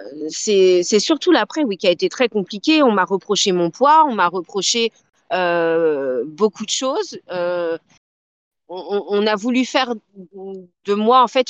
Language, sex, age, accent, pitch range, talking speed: French, female, 40-59, French, 190-260 Hz, 165 wpm